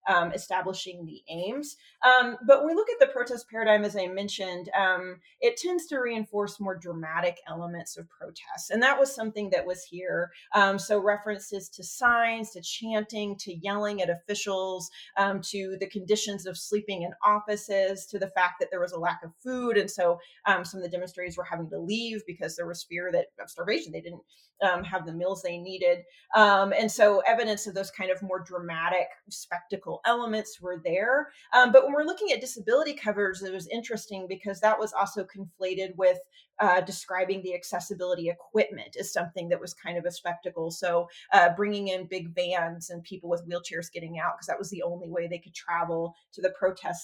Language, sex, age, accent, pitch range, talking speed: English, female, 30-49, American, 175-210 Hz, 200 wpm